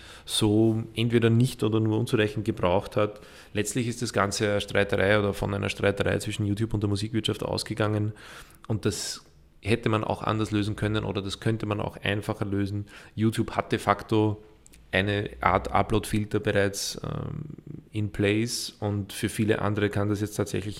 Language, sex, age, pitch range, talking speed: German, male, 20-39, 100-110 Hz, 165 wpm